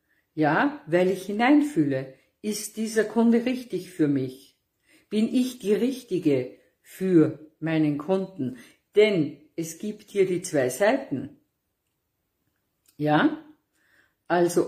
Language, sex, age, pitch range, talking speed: German, female, 50-69, 155-225 Hz, 105 wpm